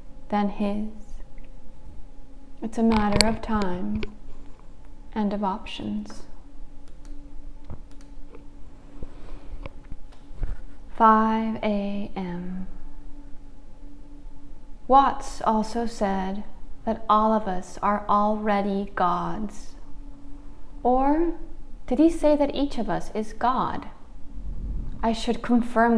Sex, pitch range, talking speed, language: female, 205-235 Hz, 80 wpm, English